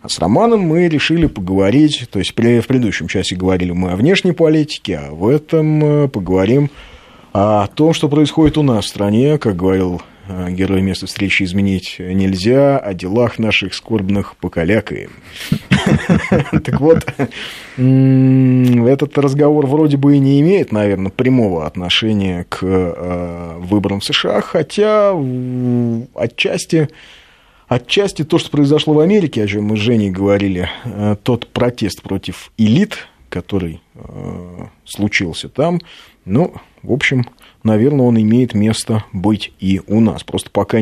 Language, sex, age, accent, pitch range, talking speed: Russian, male, 30-49, native, 95-140 Hz, 130 wpm